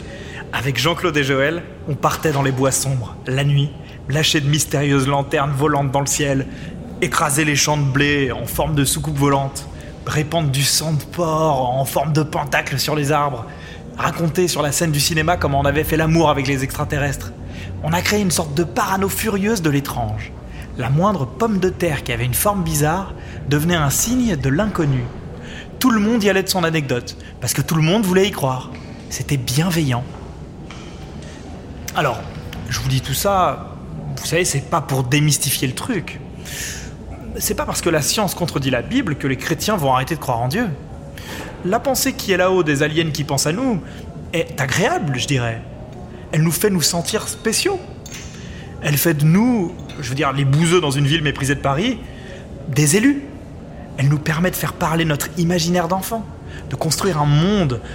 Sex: male